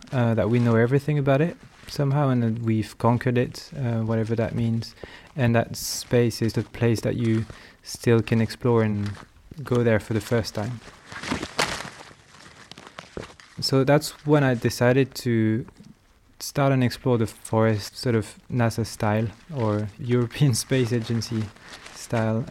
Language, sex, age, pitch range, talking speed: English, male, 20-39, 110-125 Hz, 145 wpm